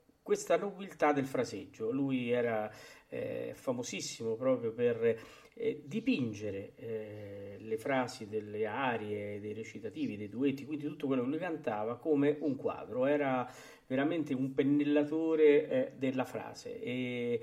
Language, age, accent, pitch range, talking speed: Italian, 40-59, native, 115-155 Hz, 130 wpm